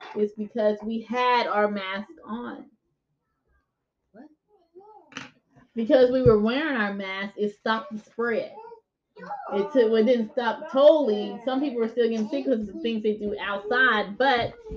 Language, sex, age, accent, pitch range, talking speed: English, female, 20-39, American, 210-260 Hz, 145 wpm